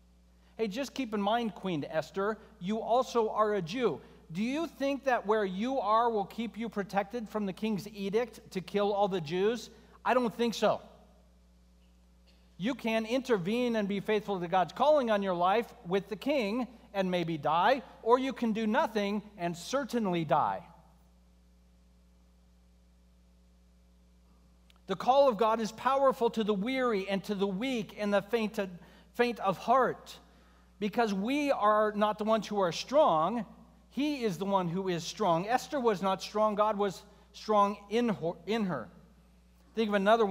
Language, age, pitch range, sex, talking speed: English, 40-59, 175-225 Hz, male, 160 wpm